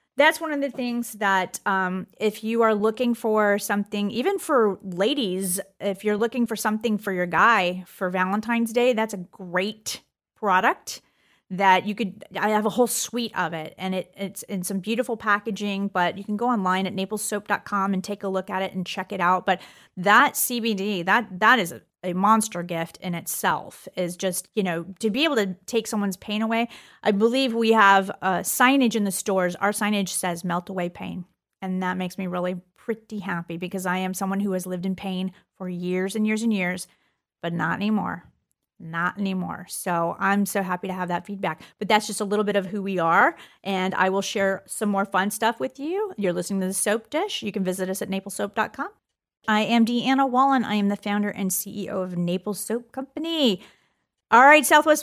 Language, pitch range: English, 185-230 Hz